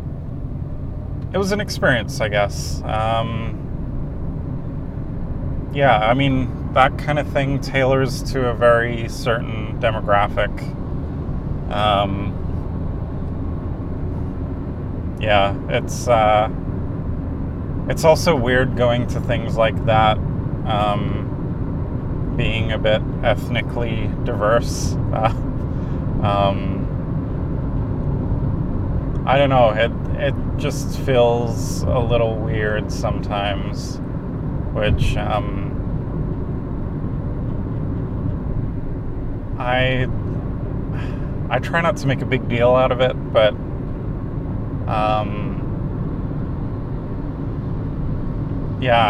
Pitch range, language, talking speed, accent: 100-130 Hz, English, 80 wpm, American